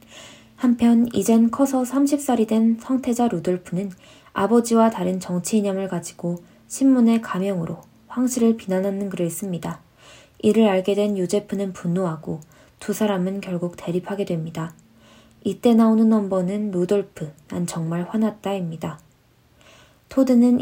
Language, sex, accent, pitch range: Korean, female, native, 175-225 Hz